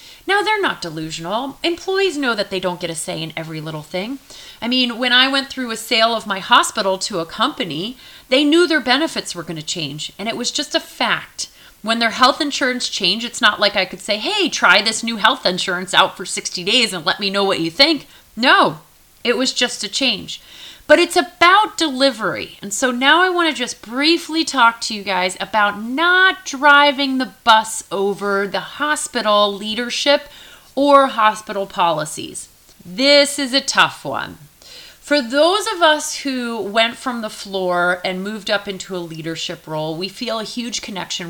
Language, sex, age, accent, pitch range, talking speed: English, female, 30-49, American, 190-285 Hz, 190 wpm